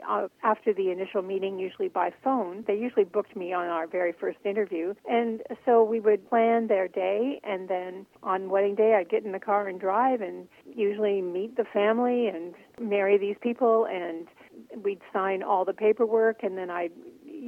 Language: English